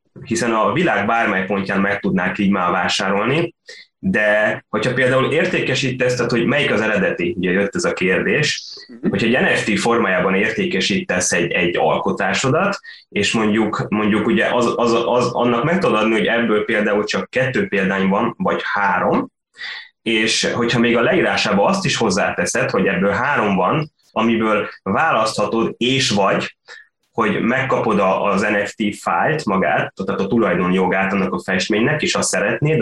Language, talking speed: Hungarian, 150 wpm